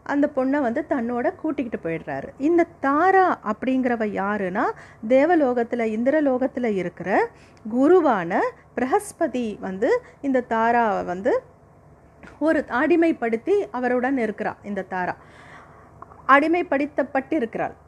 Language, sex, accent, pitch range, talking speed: Tamil, female, native, 225-300 Hz, 85 wpm